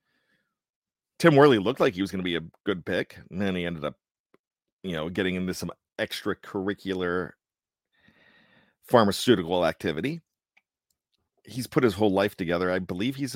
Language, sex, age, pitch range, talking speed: English, male, 40-59, 90-125 Hz, 155 wpm